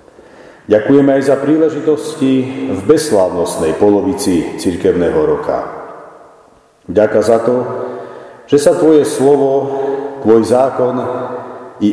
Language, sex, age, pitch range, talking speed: Slovak, male, 50-69, 110-140 Hz, 95 wpm